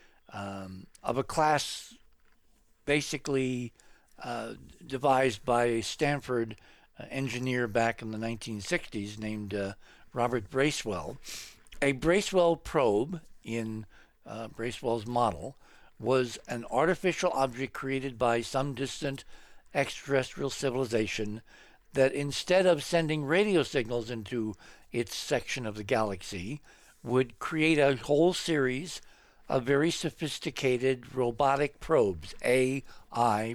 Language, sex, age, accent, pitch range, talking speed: English, male, 60-79, American, 115-145 Hz, 105 wpm